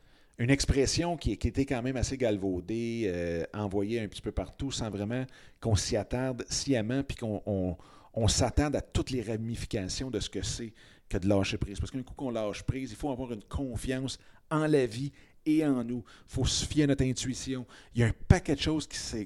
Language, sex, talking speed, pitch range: French, male, 220 wpm, 105-130 Hz